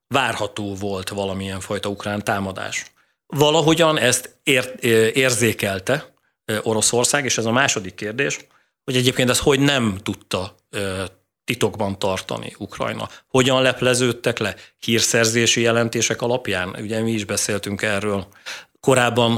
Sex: male